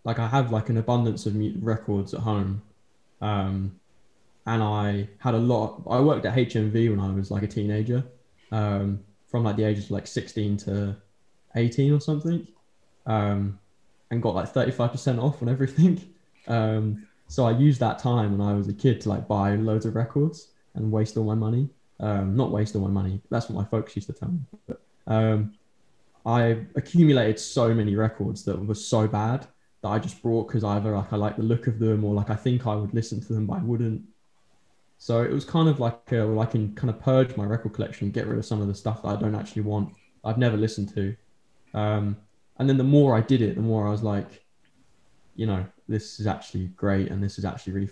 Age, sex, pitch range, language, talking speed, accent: 10-29, male, 100-120 Hz, English, 220 wpm, British